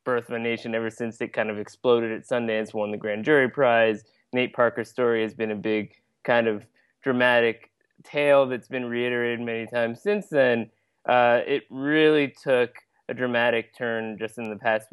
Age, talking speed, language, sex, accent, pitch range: 20-39, 185 wpm, English, male, American, 115-130 Hz